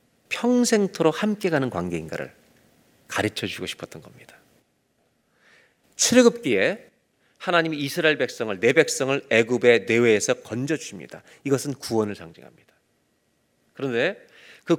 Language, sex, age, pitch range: Korean, male, 40-59, 115-170 Hz